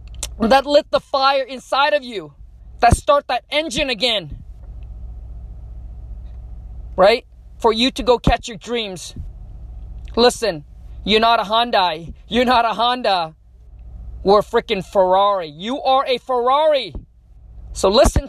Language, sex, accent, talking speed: English, male, American, 125 wpm